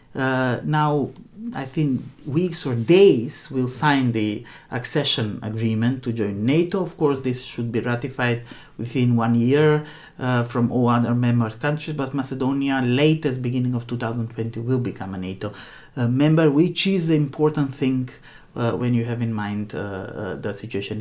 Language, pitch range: Finnish, 115-150 Hz